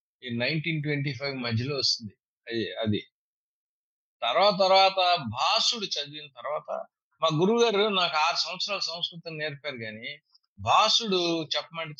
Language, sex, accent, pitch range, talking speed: Telugu, male, native, 120-170 Hz, 120 wpm